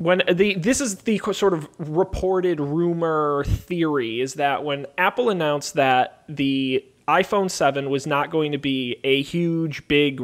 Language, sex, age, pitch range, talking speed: English, male, 20-39, 135-170 Hz, 160 wpm